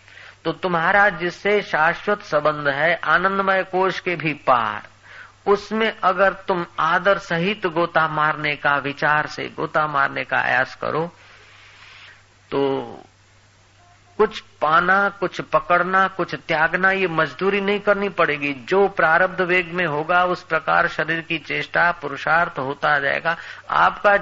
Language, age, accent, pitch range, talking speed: Hindi, 50-69, native, 150-190 Hz, 130 wpm